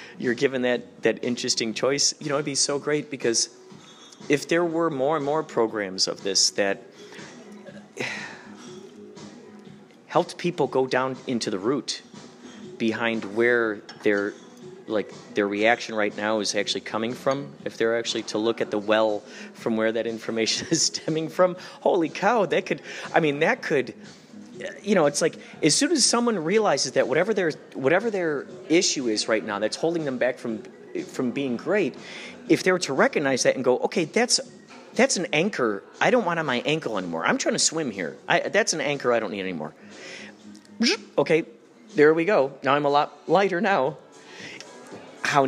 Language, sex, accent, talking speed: English, male, American, 180 wpm